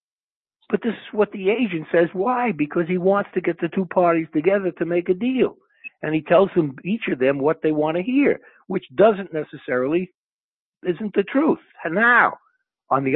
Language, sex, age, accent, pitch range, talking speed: English, male, 60-79, American, 150-200 Hz, 195 wpm